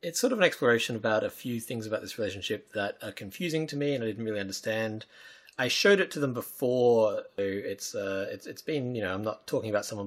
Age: 30-49